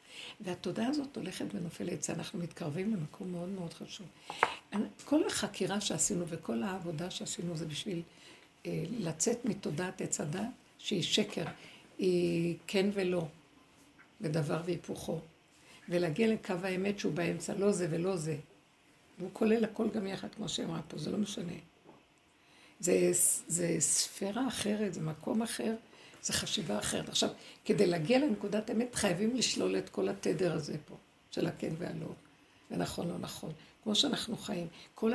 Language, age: Hebrew, 60-79